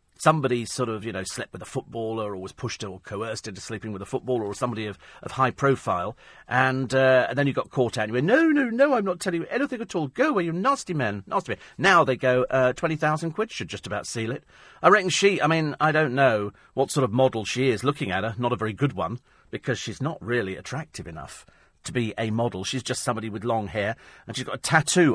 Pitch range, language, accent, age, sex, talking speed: 105-150 Hz, English, British, 40-59, male, 255 wpm